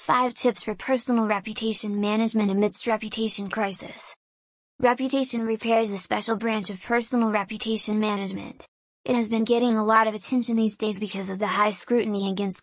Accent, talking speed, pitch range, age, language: American, 160 wpm, 205-235 Hz, 20-39, English